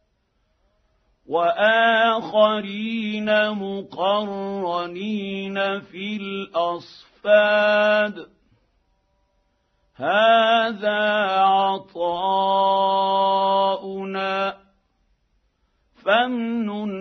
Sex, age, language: male, 50-69, Arabic